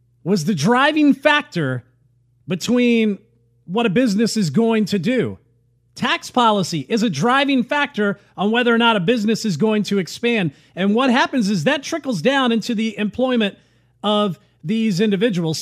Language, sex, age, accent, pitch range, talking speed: English, male, 40-59, American, 190-260 Hz, 160 wpm